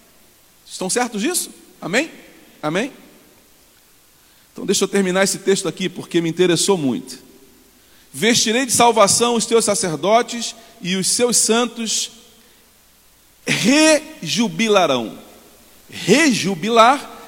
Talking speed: 95 wpm